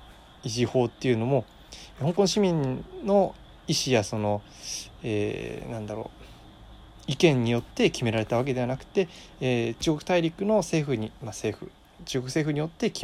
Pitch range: 105-165 Hz